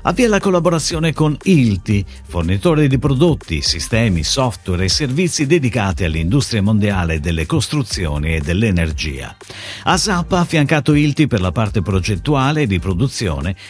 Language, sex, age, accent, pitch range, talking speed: Italian, male, 50-69, native, 90-150 Hz, 130 wpm